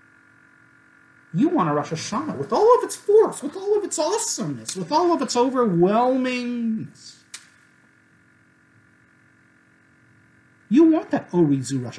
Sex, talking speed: male, 125 wpm